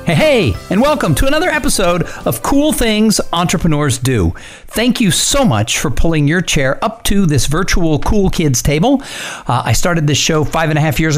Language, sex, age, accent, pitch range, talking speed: English, male, 50-69, American, 120-170 Hz, 195 wpm